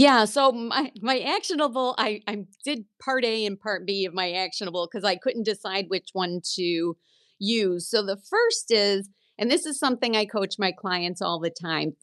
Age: 40-59